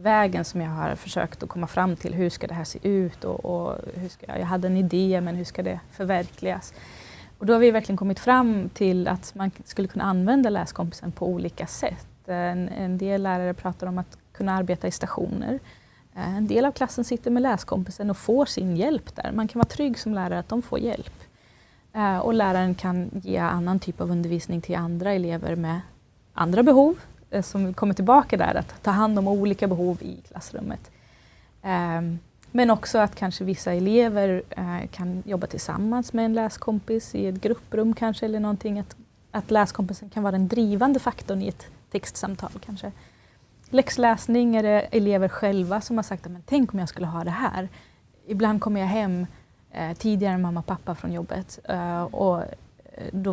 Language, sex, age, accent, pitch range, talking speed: Swedish, female, 20-39, native, 180-220 Hz, 185 wpm